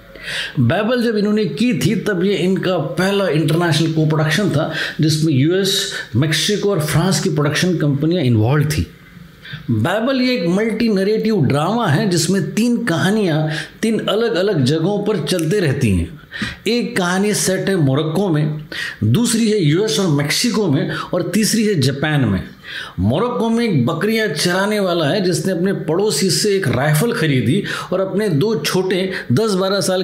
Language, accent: Hindi, native